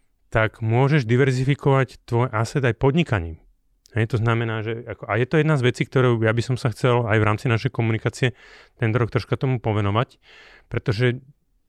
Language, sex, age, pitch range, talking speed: Slovak, male, 30-49, 100-125 Hz, 180 wpm